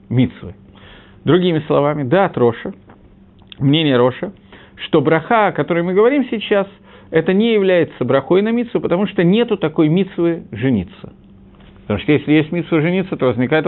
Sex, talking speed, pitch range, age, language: male, 155 wpm, 125-180 Hz, 50-69, Russian